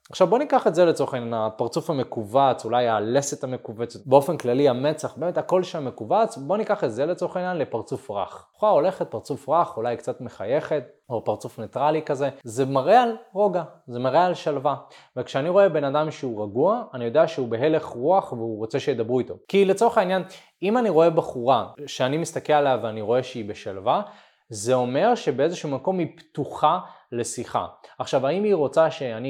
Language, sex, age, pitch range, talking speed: Hebrew, male, 20-39, 120-175 Hz, 130 wpm